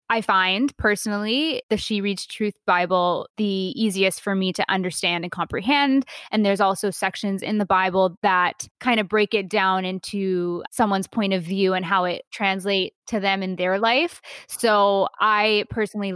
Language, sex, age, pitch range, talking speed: English, female, 20-39, 185-215 Hz, 170 wpm